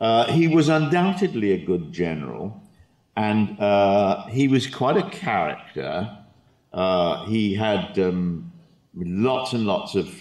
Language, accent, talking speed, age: English, British, 130 wpm, 50-69